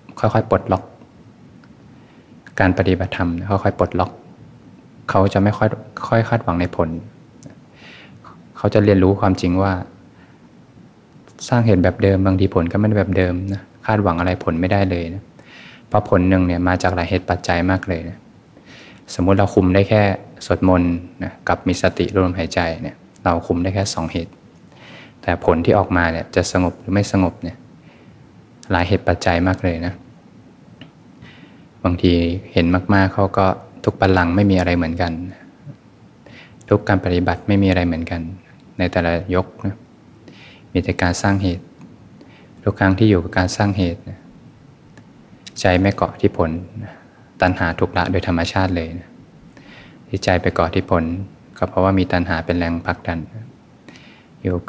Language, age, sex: Thai, 20-39, male